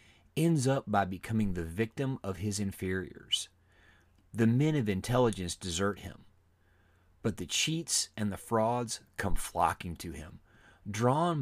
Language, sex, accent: English, male, American